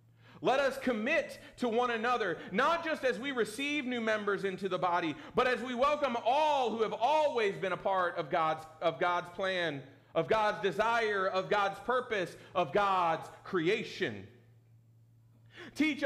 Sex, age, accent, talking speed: male, 40-59, American, 155 wpm